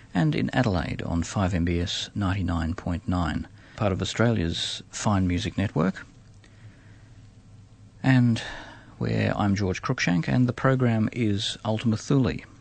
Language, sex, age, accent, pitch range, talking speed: English, male, 50-69, Australian, 95-110 Hz, 110 wpm